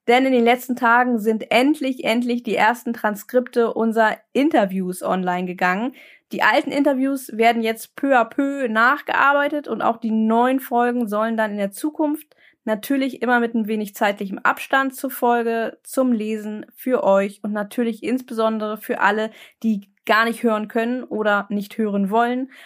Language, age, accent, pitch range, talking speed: German, 20-39, German, 215-250 Hz, 160 wpm